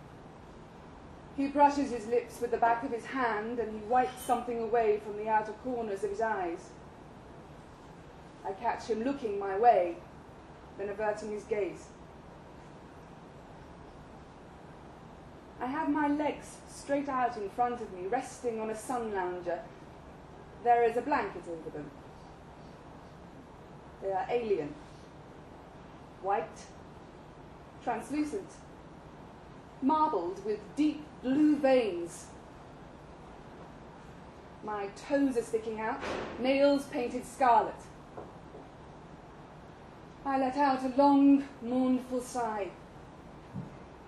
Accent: British